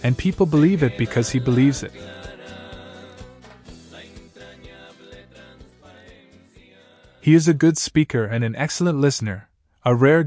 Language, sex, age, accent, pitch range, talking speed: Italian, male, 20-39, American, 110-140 Hz, 110 wpm